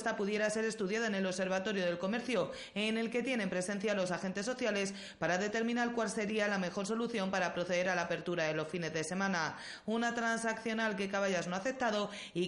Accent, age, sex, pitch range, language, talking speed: Spanish, 30-49, female, 180-225 Hz, Spanish, 200 wpm